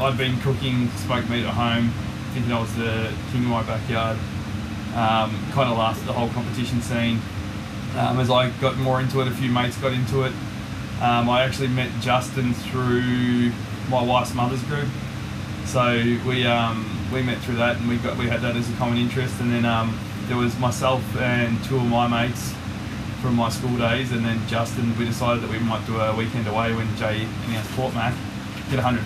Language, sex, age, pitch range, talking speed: English, male, 20-39, 110-130 Hz, 200 wpm